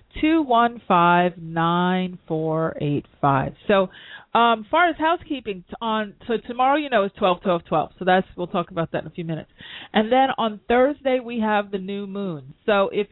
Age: 30-49